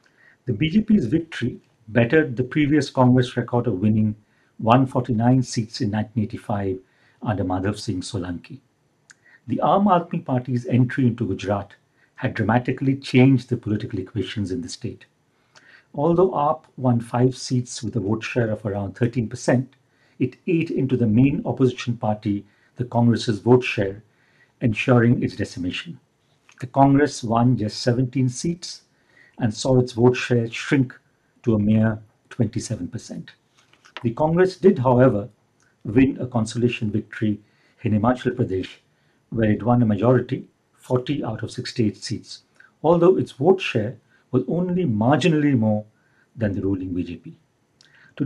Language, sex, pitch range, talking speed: English, male, 110-130 Hz, 140 wpm